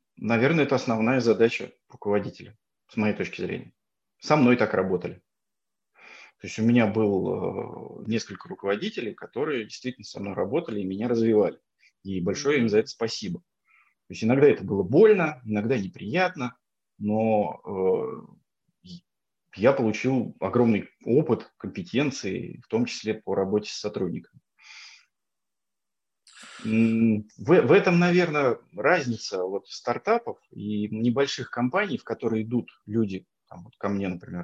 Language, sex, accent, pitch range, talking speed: Russian, male, native, 105-150 Hz, 125 wpm